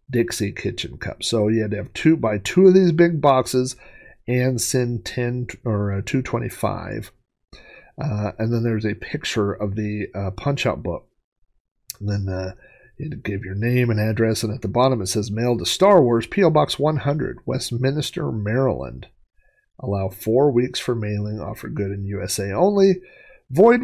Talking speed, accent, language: 175 wpm, American, English